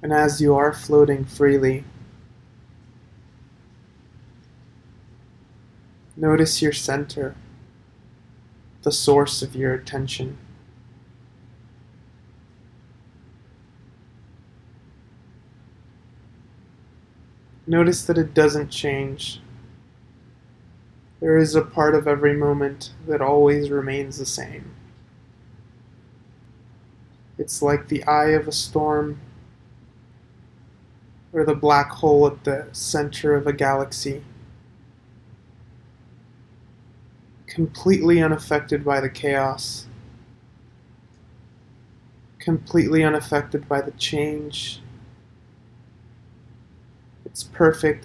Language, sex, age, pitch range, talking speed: English, male, 20-39, 120-145 Hz, 75 wpm